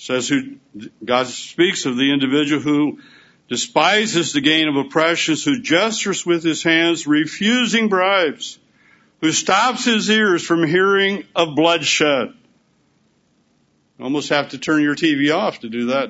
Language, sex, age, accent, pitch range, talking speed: English, male, 60-79, American, 135-195 Hz, 145 wpm